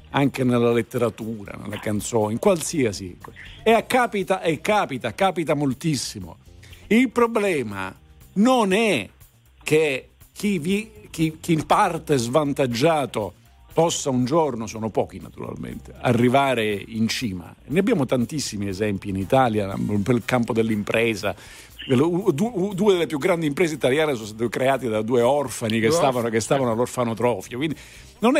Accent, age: native, 50-69